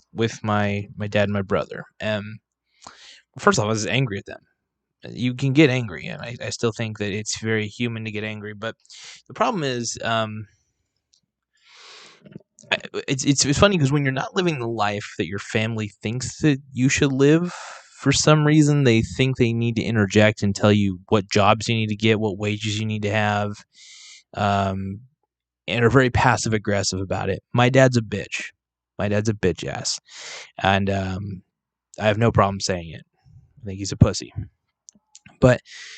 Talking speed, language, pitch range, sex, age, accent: 190 wpm, English, 105-135 Hz, male, 20-39, American